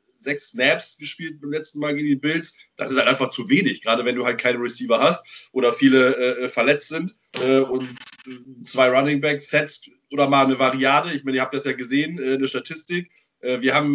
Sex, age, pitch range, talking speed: male, 30-49, 135-175 Hz, 215 wpm